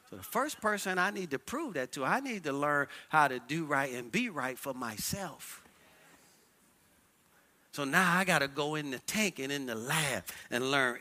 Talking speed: 205 wpm